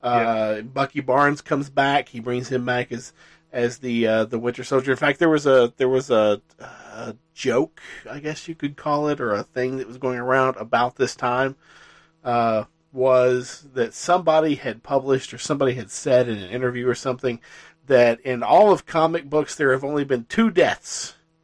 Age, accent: 40-59, American